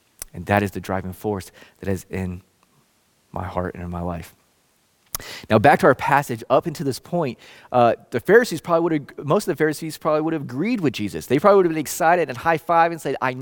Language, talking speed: English, 235 wpm